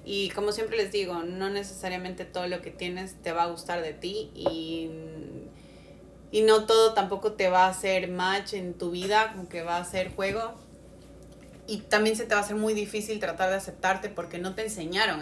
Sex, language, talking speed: female, Spanish, 205 wpm